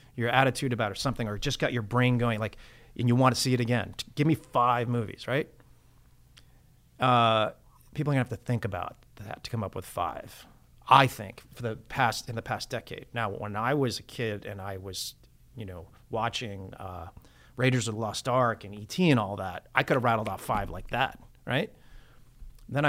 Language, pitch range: English, 110-130 Hz